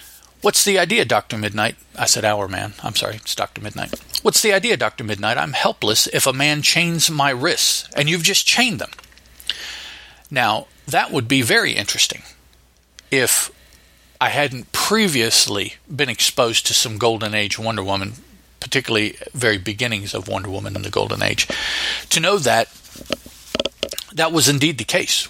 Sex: male